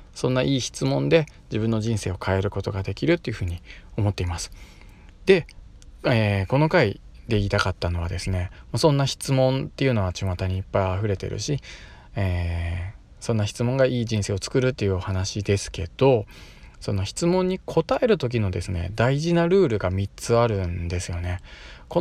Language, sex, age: Japanese, male, 20-39